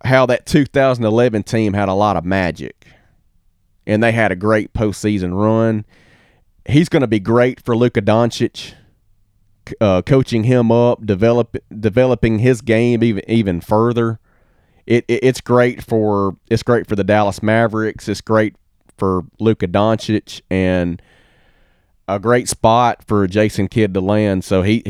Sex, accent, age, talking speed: male, American, 30-49, 150 wpm